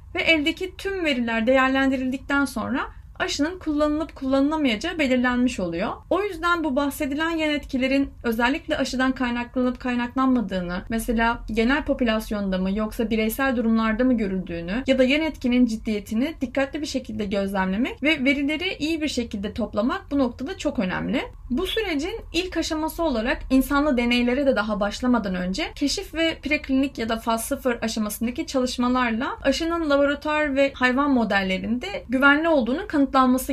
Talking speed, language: 140 wpm, Turkish